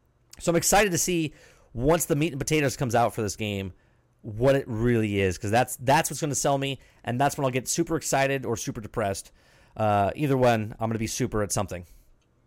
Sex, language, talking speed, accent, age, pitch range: male, English, 220 wpm, American, 30-49, 110-145 Hz